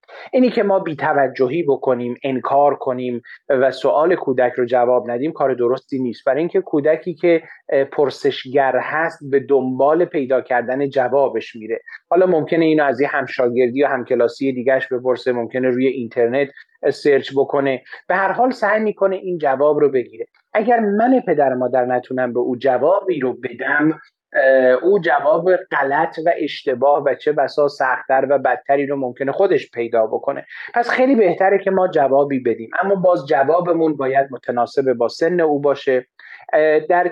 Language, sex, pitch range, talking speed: Persian, male, 130-180 Hz, 155 wpm